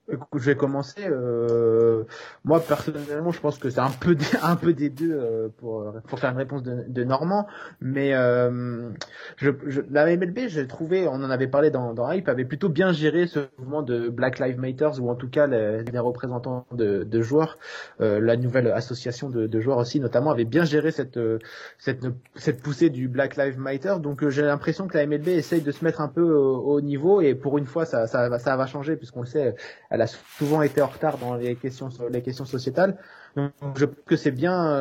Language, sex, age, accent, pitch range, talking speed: French, male, 20-39, French, 120-150 Hz, 220 wpm